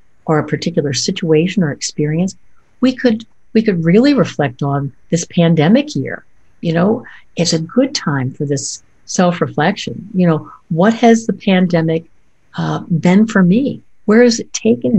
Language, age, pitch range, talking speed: English, 60-79, 160-225 Hz, 160 wpm